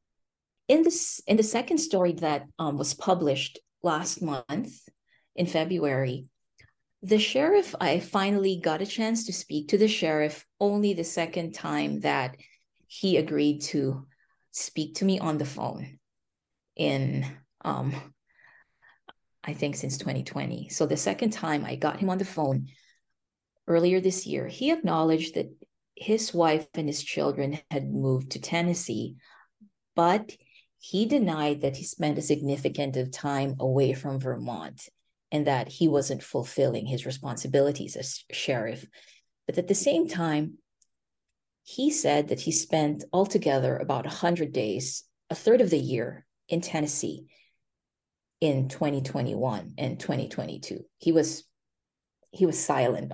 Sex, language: female, English